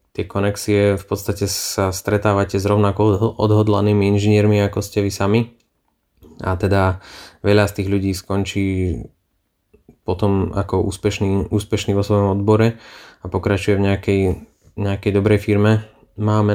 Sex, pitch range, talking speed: male, 95-105 Hz, 130 wpm